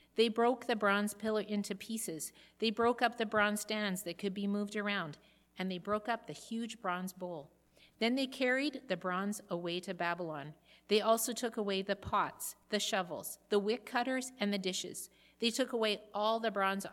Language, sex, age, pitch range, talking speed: English, female, 50-69, 185-225 Hz, 190 wpm